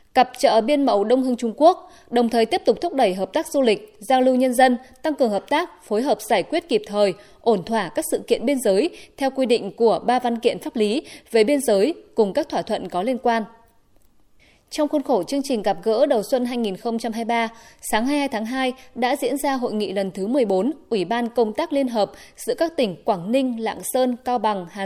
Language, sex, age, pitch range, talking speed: Vietnamese, female, 20-39, 215-280 Hz, 230 wpm